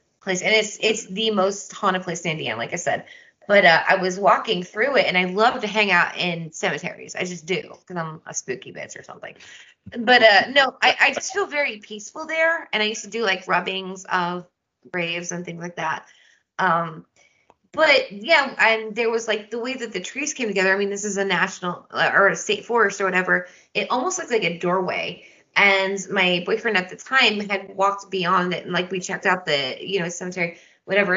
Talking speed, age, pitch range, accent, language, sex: 220 wpm, 20-39, 180-220 Hz, American, English, female